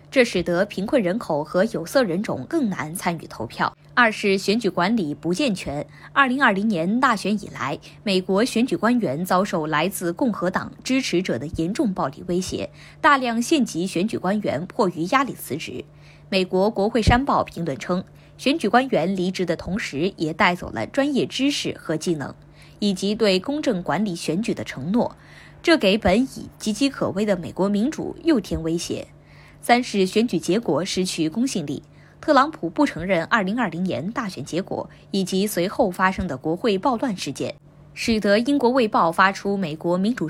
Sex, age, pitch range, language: female, 20-39, 170-230 Hz, Chinese